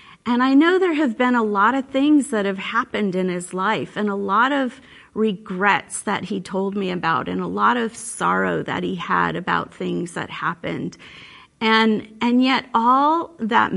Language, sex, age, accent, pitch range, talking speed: English, female, 40-59, American, 205-250 Hz, 185 wpm